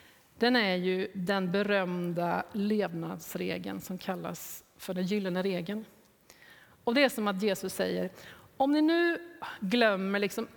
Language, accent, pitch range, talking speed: Swedish, native, 185-240 Hz, 135 wpm